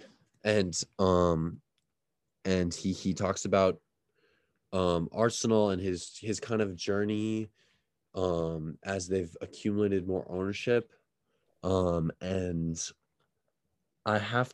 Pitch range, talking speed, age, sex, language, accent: 95-120 Hz, 105 wpm, 20-39, male, English, American